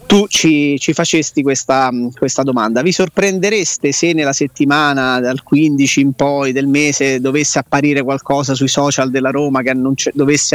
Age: 30-49